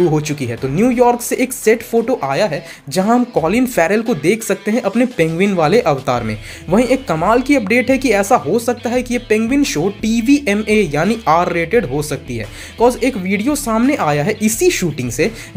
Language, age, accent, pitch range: Hindi, 20-39, native, 170-245 Hz